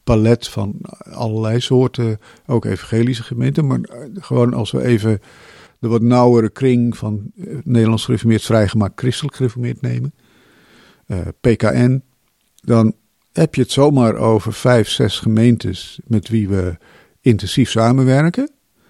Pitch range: 105-125 Hz